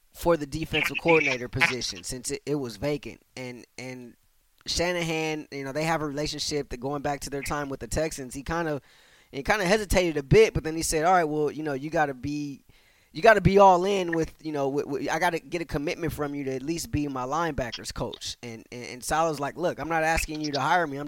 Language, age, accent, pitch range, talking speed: English, 20-39, American, 130-160 Hz, 255 wpm